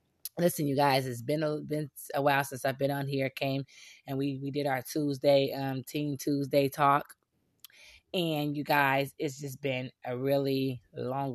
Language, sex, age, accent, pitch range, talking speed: English, female, 20-39, American, 130-155 Hz, 180 wpm